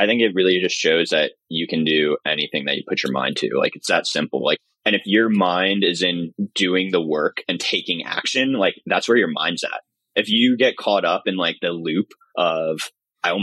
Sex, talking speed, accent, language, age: male, 230 wpm, American, English, 20-39